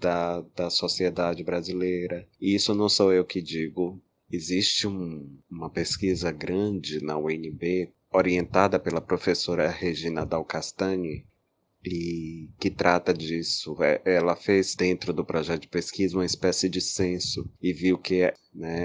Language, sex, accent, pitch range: Portuguese, male, Brazilian, 85-95 Hz